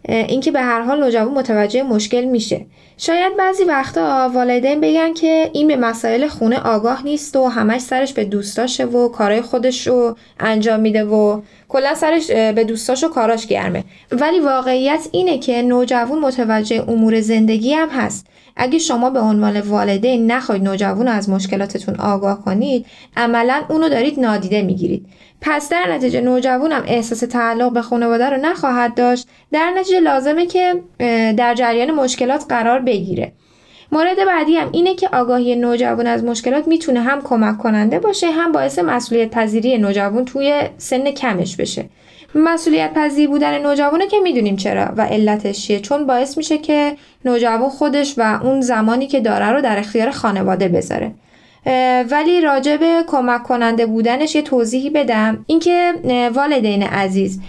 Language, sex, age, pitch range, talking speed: Persian, female, 10-29, 220-280 Hz, 150 wpm